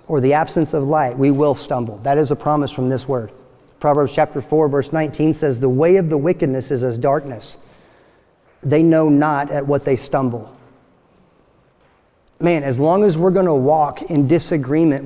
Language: English